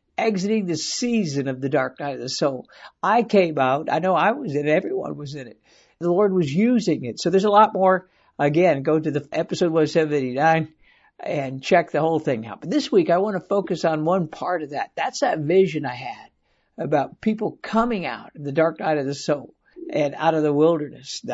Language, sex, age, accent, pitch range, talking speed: English, male, 60-79, American, 150-205 Hz, 220 wpm